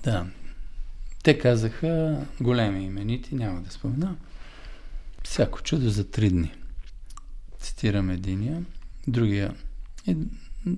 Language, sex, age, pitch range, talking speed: Bulgarian, male, 50-69, 95-130 Hz, 100 wpm